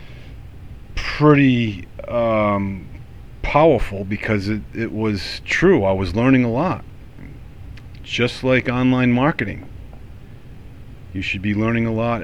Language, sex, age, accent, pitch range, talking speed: English, male, 40-59, American, 100-125 Hz, 110 wpm